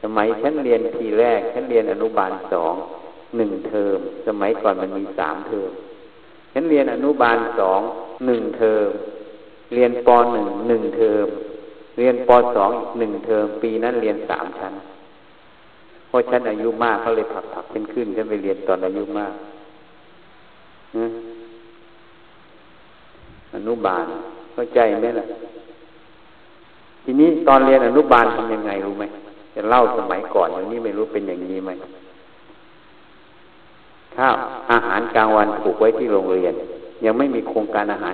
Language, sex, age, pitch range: Thai, male, 60-79, 110-165 Hz